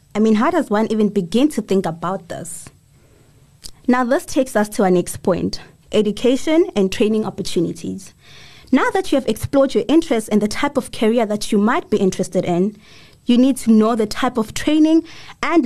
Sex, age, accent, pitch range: female, 20-39, South African, 185-250 Hz